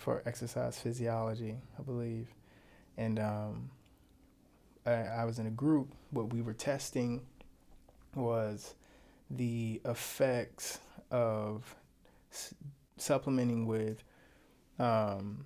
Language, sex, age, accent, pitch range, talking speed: English, male, 20-39, American, 110-125 Hz, 95 wpm